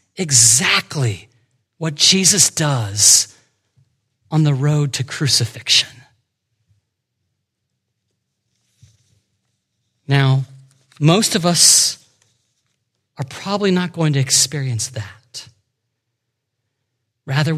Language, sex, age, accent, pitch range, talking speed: English, male, 40-59, American, 120-165 Hz, 70 wpm